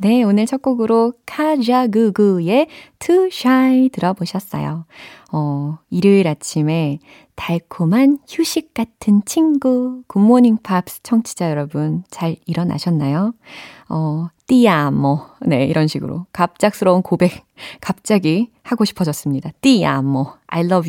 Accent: native